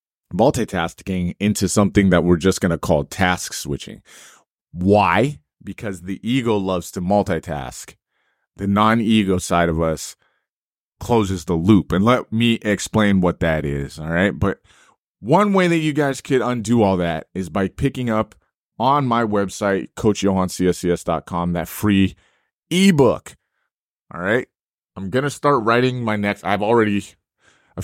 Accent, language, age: American, English, 30-49